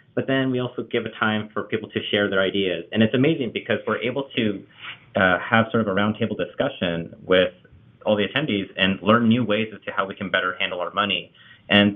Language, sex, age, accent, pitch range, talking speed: English, male, 30-49, American, 95-115 Hz, 225 wpm